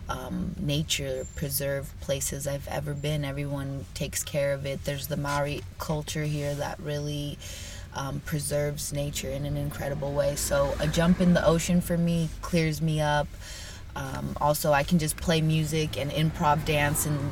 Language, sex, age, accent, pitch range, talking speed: English, female, 20-39, American, 140-165 Hz, 155 wpm